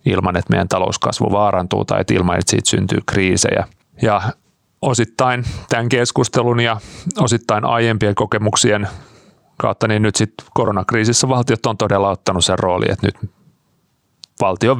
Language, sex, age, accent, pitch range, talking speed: Finnish, male, 30-49, native, 95-110 Hz, 140 wpm